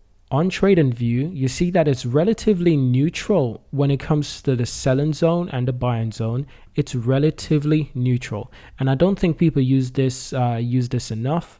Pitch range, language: 120-145 Hz, English